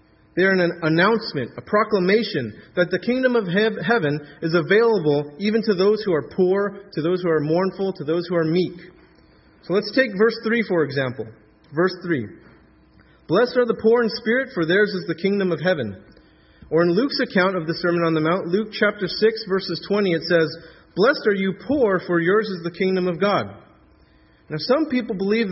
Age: 30-49